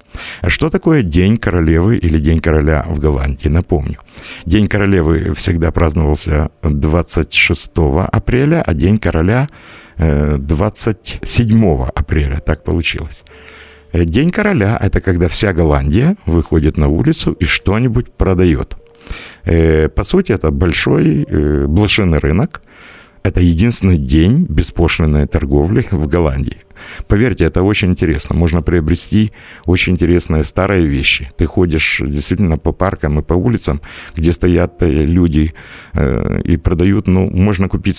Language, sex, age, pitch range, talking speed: Russian, male, 60-79, 75-95 Hz, 120 wpm